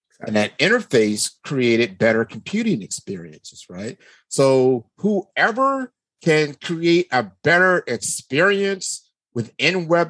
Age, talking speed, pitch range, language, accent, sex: 50-69, 100 wpm, 120-165 Hz, English, American, male